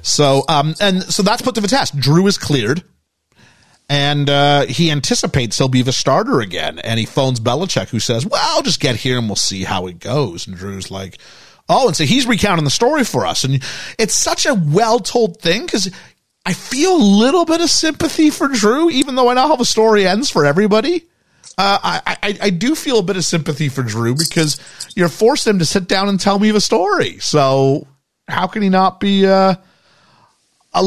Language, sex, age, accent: English, male, 40-59, American